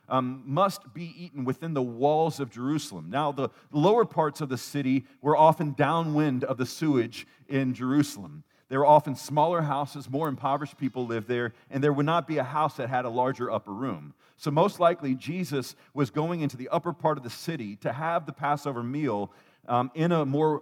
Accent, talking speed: American, 200 wpm